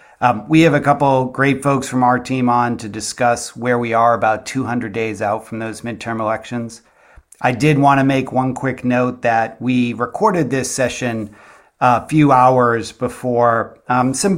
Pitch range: 115-135 Hz